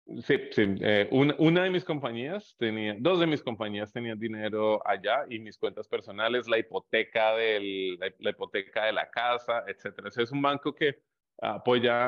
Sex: male